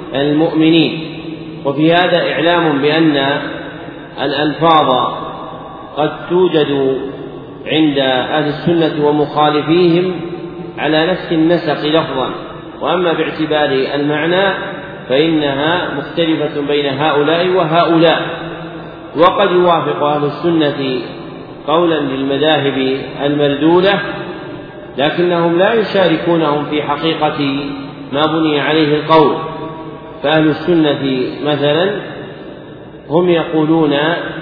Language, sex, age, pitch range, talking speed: Arabic, male, 40-59, 150-170 Hz, 80 wpm